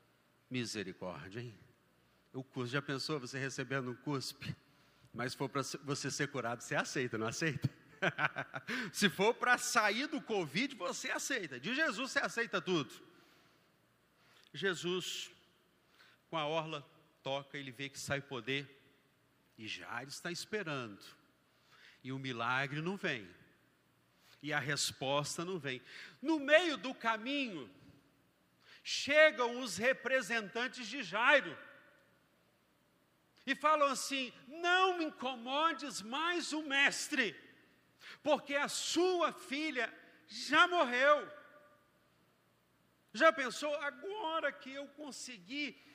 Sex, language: male, Portuguese